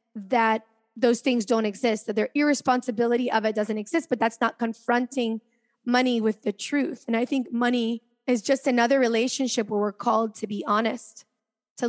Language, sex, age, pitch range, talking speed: English, female, 20-39, 220-260 Hz, 175 wpm